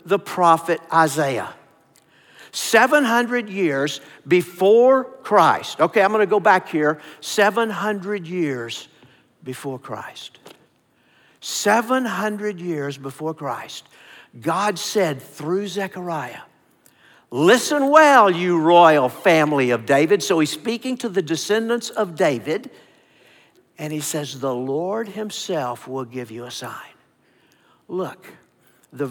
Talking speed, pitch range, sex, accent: 115 wpm, 140-200 Hz, male, American